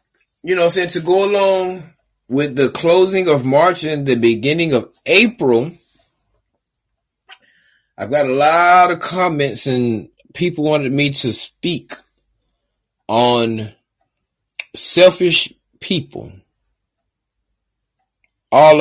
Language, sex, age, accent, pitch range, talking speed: English, male, 30-49, American, 125-165 Hz, 105 wpm